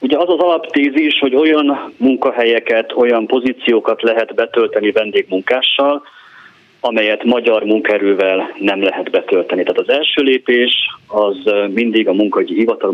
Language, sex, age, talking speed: Hungarian, male, 30-49, 130 wpm